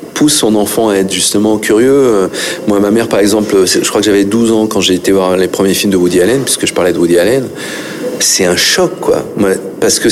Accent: French